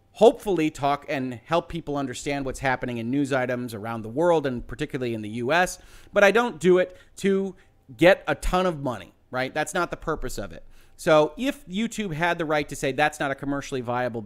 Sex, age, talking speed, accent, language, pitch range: male, 30-49, 210 wpm, American, English, 125-180 Hz